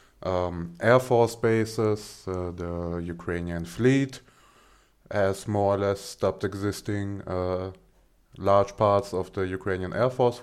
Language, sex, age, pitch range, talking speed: English, male, 30-49, 90-110 Hz, 125 wpm